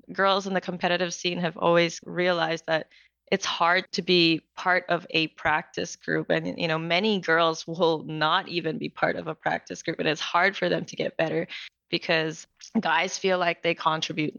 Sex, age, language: female, 10-29, English